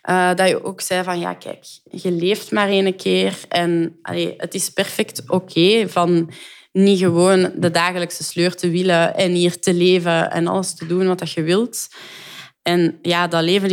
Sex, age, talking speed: female, 20-39, 190 wpm